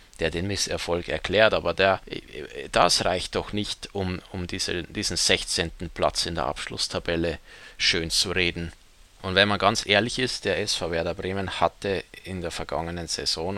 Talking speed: 155 wpm